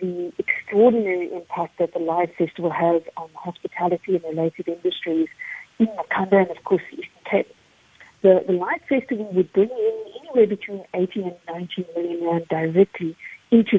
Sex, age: female, 50-69